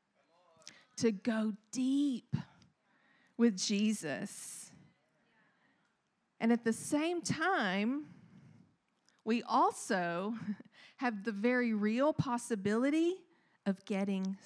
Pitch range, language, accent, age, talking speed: 195-245 Hz, English, American, 40-59, 80 wpm